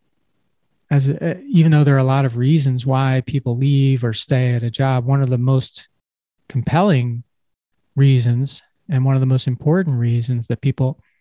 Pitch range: 125-145 Hz